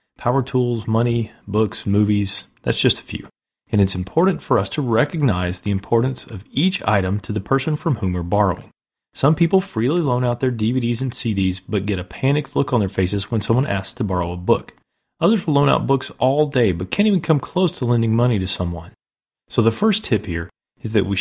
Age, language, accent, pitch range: 30-49, English, American, 100-130 Hz